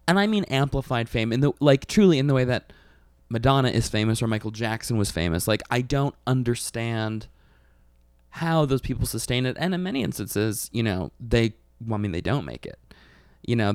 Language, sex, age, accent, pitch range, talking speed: English, male, 20-39, American, 105-130 Hz, 195 wpm